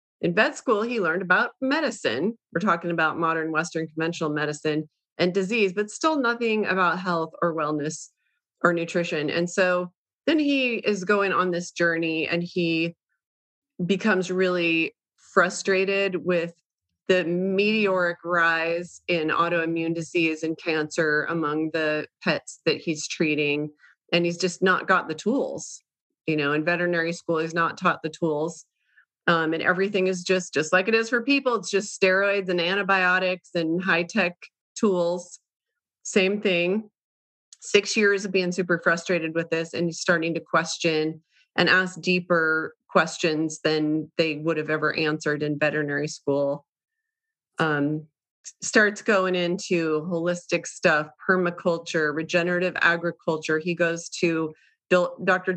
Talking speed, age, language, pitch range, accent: 140 wpm, 30-49, English, 160-185 Hz, American